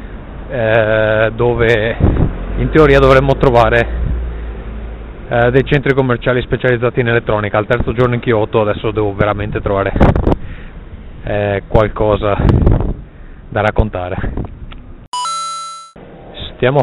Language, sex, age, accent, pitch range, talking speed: Italian, male, 30-49, native, 100-120 Hz, 85 wpm